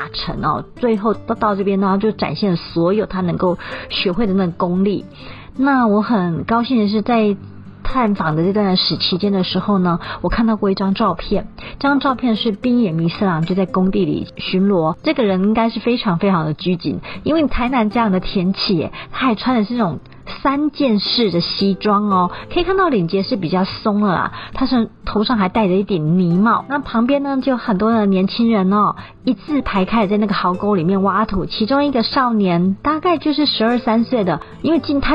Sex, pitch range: female, 190-245 Hz